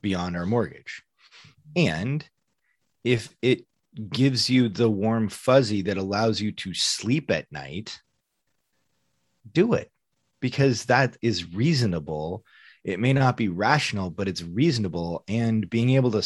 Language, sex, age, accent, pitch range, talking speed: English, male, 30-49, American, 95-120 Hz, 135 wpm